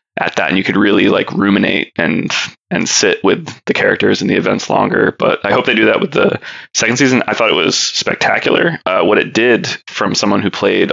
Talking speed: 225 wpm